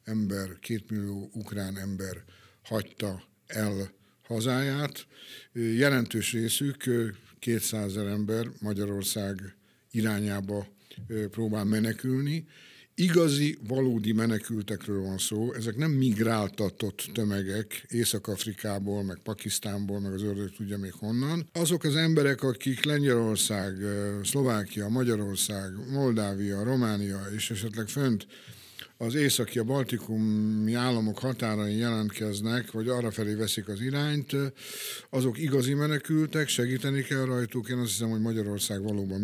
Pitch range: 105-125 Hz